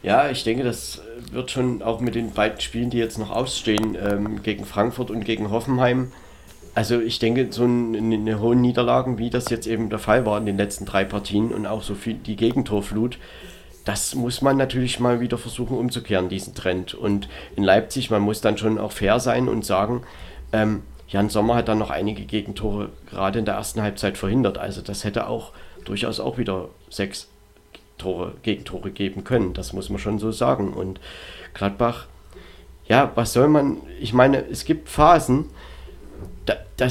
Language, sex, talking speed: German, male, 185 wpm